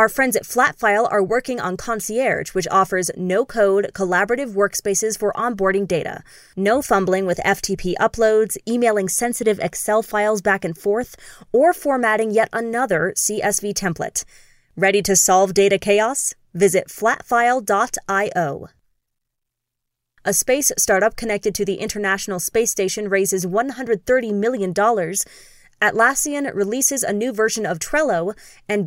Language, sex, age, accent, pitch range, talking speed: English, female, 20-39, American, 195-235 Hz, 125 wpm